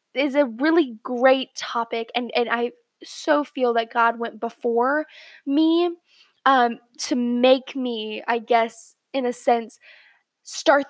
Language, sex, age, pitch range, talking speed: English, female, 10-29, 235-295 Hz, 140 wpm